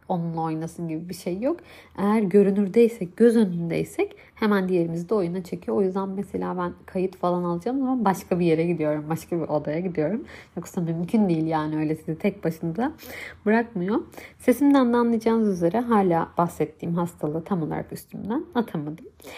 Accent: native